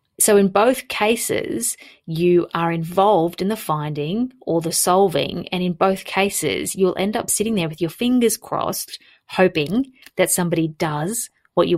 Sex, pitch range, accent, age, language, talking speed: female, 165-200 Hz, Australian, 30-49, English, 165 wpm